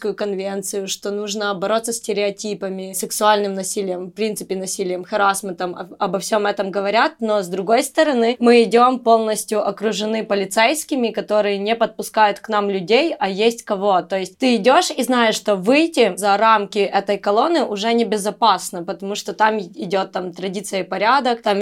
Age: 20-39